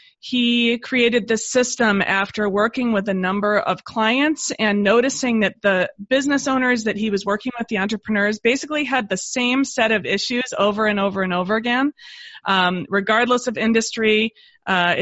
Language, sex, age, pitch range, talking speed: English, female, 30-49, 195-250 Hz, 170 wpm